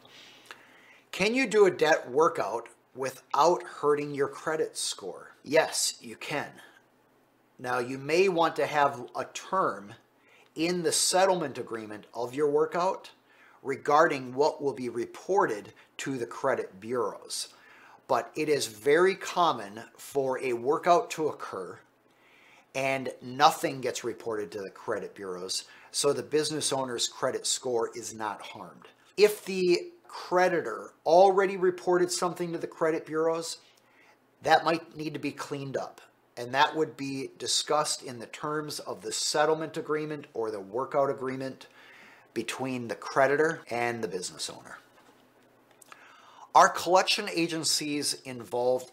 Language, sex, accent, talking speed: English, male, American, 135 wpm